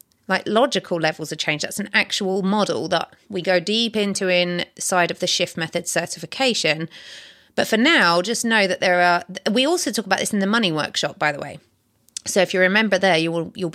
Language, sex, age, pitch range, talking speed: English, female, 30-49, 185-245 Hz, 200 wpm